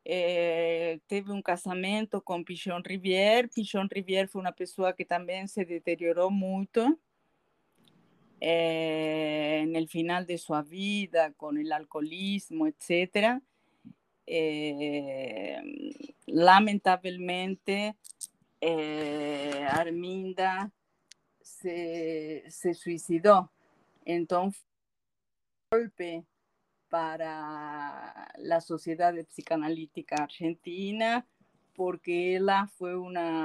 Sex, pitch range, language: female, 160-195 Hz, Portuguese